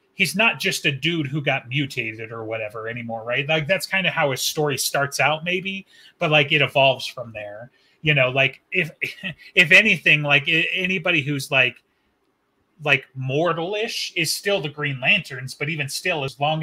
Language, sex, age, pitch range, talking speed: English, male, 30-49, 130-165 Hz, 180 wpm